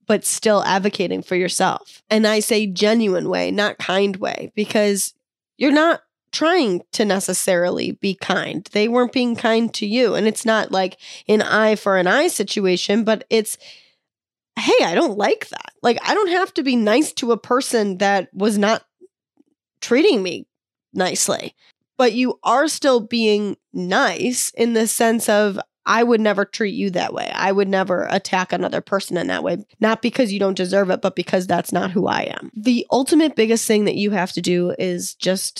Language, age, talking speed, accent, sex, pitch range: English, 10-29, 185 wpm, American, female, 185-225 Hz